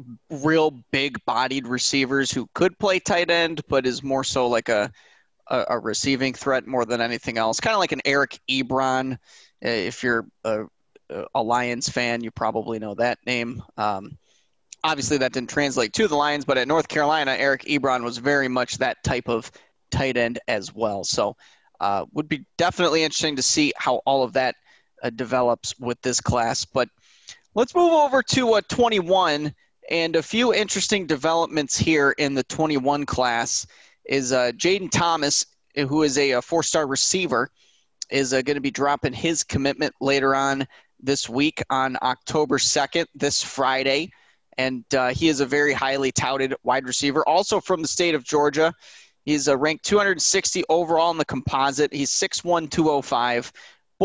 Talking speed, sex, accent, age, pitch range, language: 170 wpm, male, American, 20-39, 125-160 Hz, English